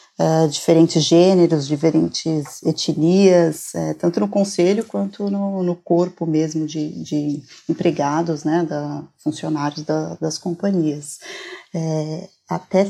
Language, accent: Portuguese, Brazilian